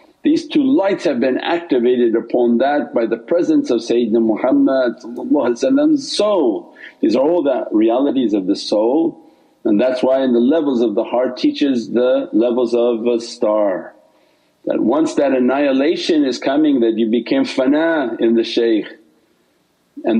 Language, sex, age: English, male, 50-69